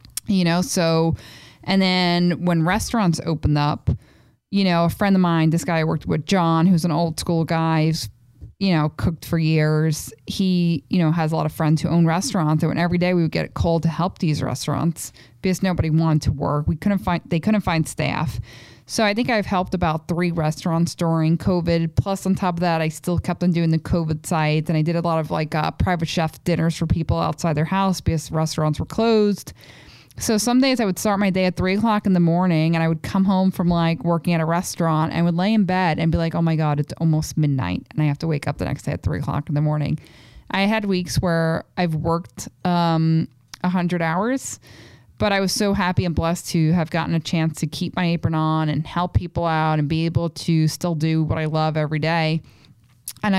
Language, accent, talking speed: English, American, 235 wpm